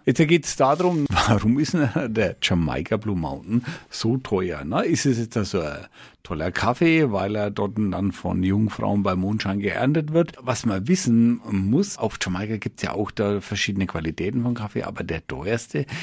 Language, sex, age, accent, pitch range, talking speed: German, male, 50-69, German, 95-125 Hz, 185 wpm